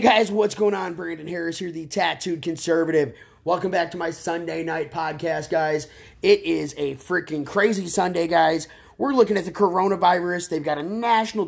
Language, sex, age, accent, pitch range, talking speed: English, male, 30-49, American, 150-180 Hz, 185 wpm